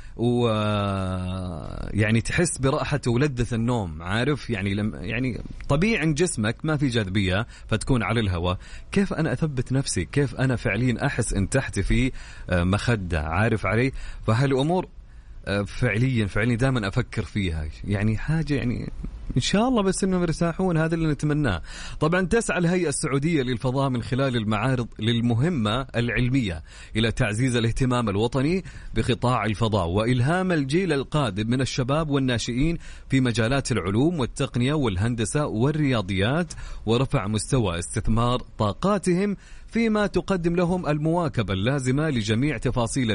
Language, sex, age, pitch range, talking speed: Arabic, male, 30-49, 110-150 Hz, 120 wpm